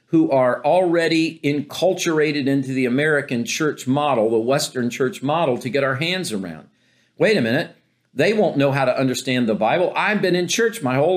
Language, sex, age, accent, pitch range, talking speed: English, male, 50-69, American, 140-195 Hz, 190 wpm